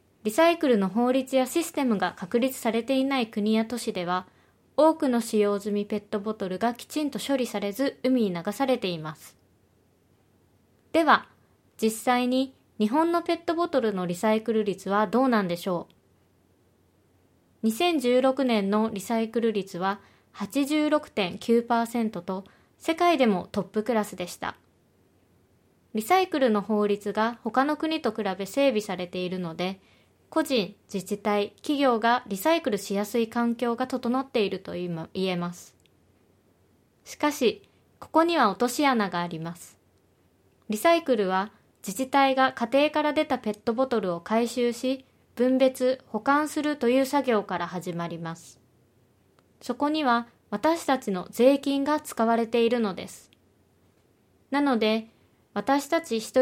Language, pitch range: Japanese, 185-265 Hz